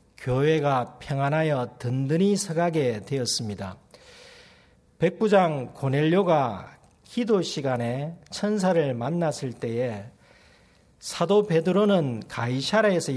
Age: 40-59